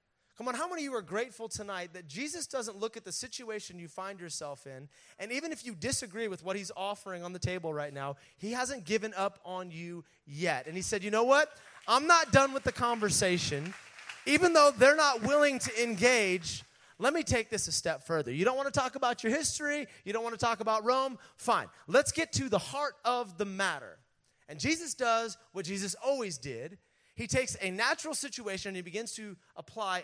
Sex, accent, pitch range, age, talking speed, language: male, American, 160-245 Hz, 30-49, 215 wpm, English